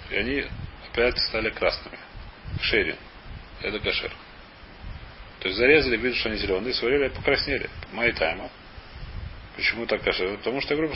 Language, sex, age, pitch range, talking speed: Russian, male, 30-49, 105-145 Hz, 130 wpm